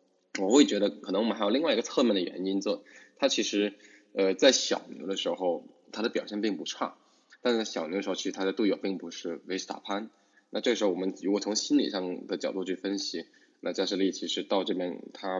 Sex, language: male, Chinese